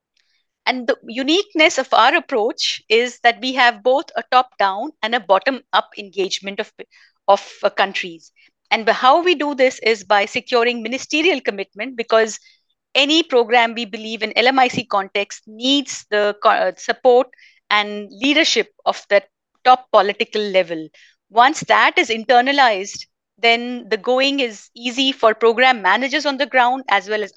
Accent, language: Indian, English